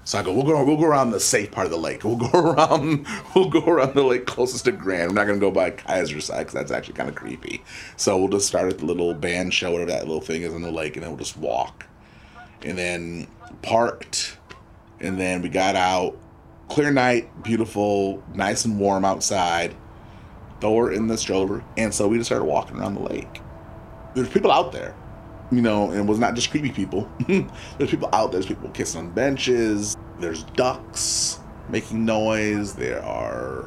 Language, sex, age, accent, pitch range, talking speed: English, male, 30-49, American, 95-120 Hz, 205 wpm